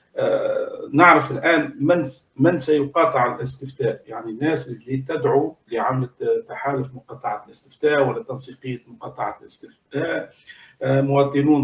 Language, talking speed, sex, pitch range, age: Arabic, 90 wpm, male, 135-175 Hz, 50-69